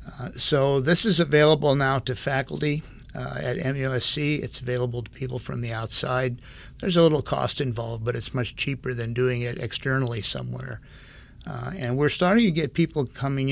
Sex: male